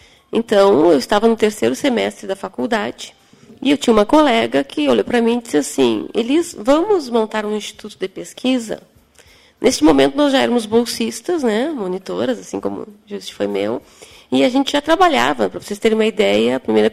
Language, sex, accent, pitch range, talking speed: Portuguese, female, Brazilian, 195-240 Hz, 185 wpm